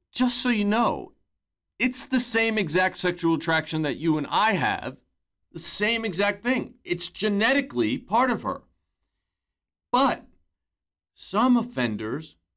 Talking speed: 130 wpm